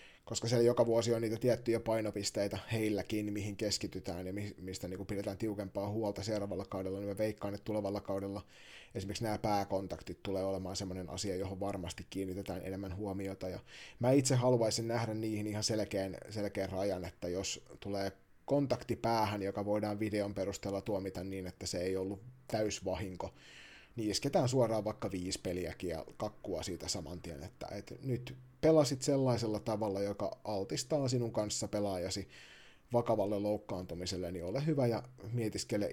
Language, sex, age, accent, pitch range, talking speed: Finnish, male, 30-49, native, 95-115 Hz, 150 wpm